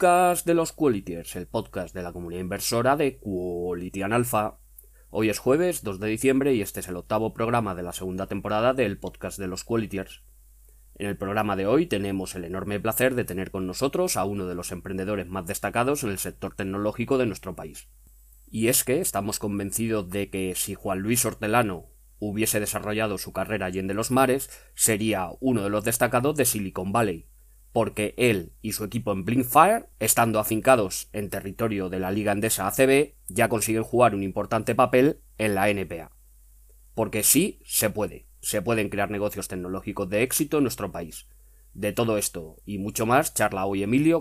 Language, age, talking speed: Spanish, 20-39, 185 wpm